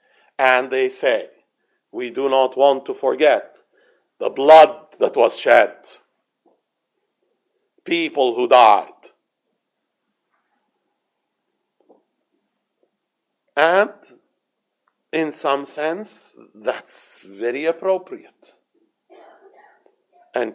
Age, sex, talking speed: 50-69, male, 75 wpm